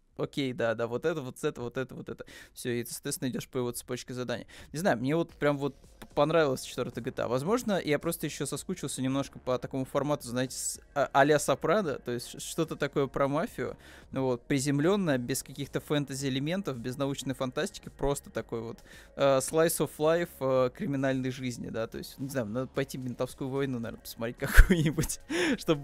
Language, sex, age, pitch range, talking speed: Russian, male, 20-39, 130-150 Hz, 185 wpm